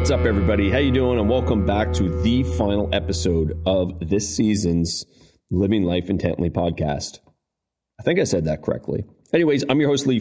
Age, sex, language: 30-49, male, English